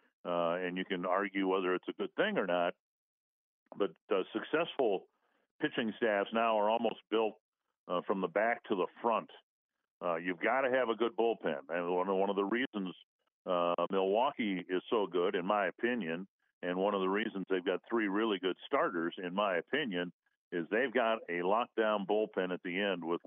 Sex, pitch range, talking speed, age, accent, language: male, 90-105 Hz, 190 wpm, 50-69, American, English